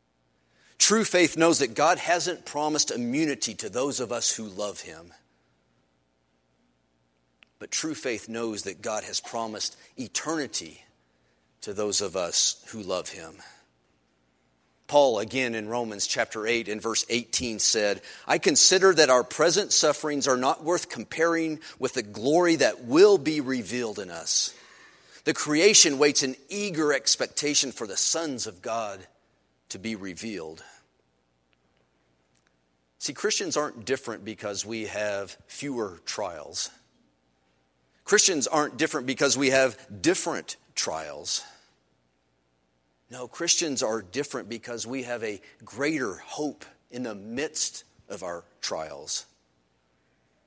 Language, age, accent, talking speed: English, 40-59, American, 125 wpm